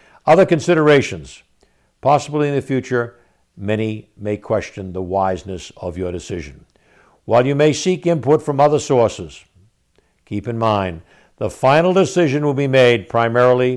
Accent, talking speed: American, 140 wpm